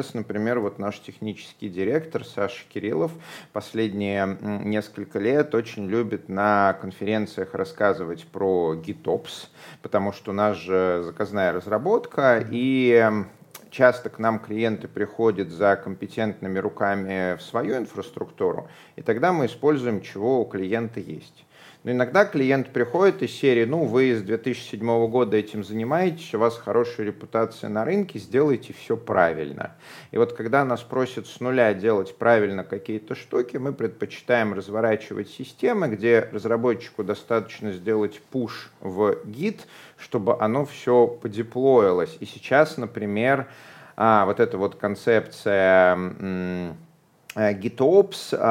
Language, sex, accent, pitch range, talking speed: Russian, male, native, 100-125 Hz, 120 wpm